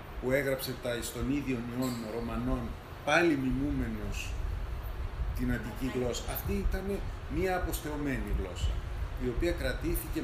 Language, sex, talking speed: Greek, male, 115 wpm